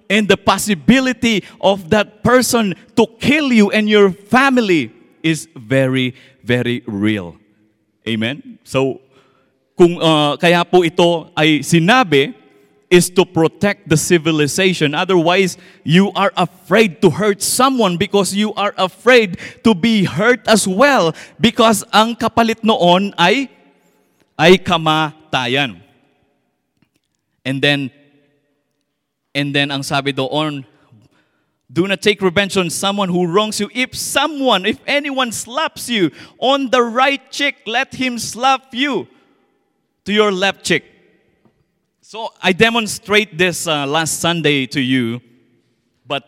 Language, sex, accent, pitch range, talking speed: English, male, Filipino, 140-215 Hz, 125 wpm